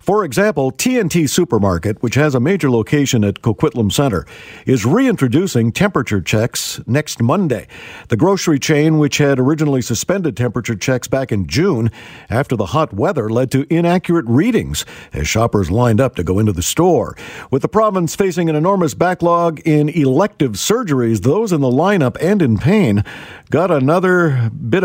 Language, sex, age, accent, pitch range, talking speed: English, male, 50-69, American, 120-170 Hz, 160 wpm